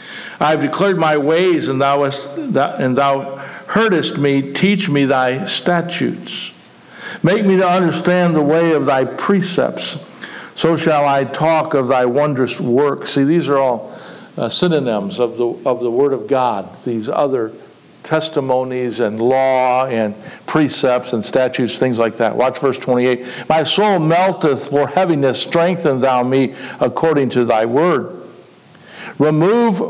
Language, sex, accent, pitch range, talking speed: English, male, American, 130-170 Hz, 150 wpm